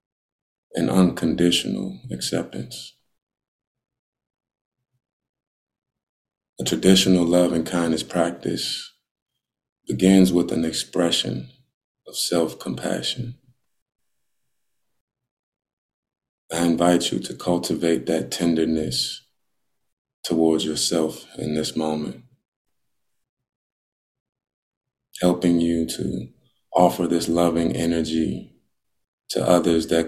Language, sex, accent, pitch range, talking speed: English, male, American, 80-90 Hz, 75 wpm